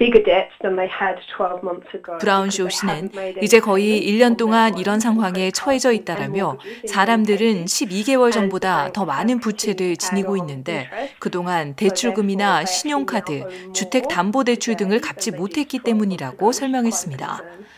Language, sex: Korean, female